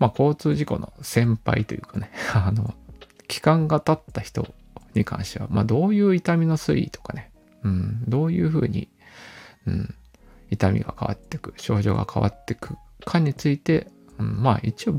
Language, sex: Japanese, male